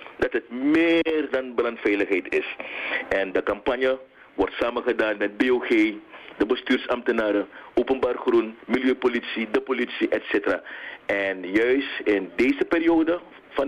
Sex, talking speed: male, 120 wpm